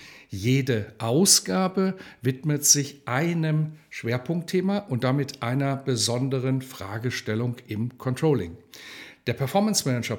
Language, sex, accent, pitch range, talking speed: German, male, German, 115-155 Hz, 95 wpm